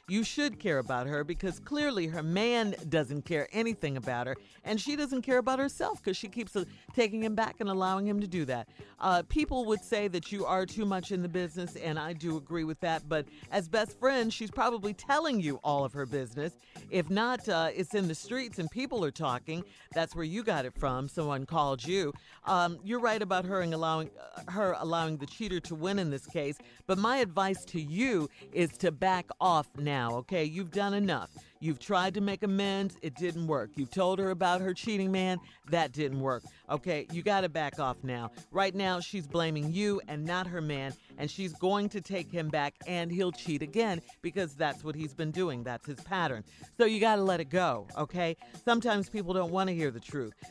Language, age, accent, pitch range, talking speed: English, 50-69, American, 150-200 Hz, 215 wpm